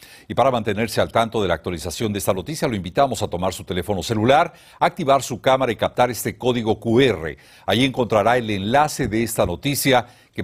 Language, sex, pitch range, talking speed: Spanish, male, 110-145 Hz, 195 wpm